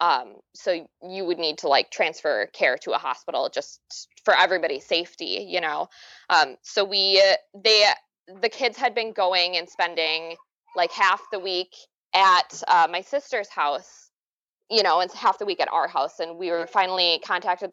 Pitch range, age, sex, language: 170-230 Hz, 20-39, female, English